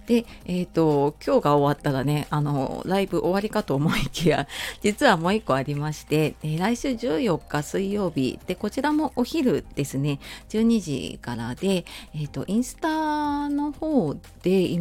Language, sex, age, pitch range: Japanese, female, 40-59, 140-215 Hz